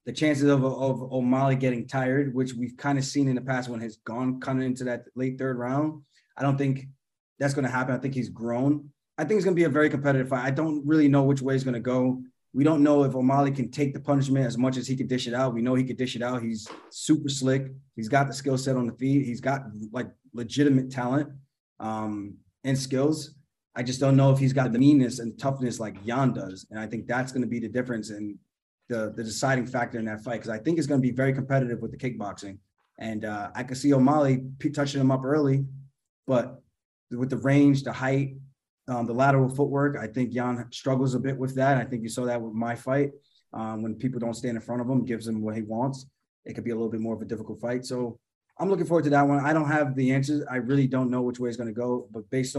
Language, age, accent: English, 20-39, American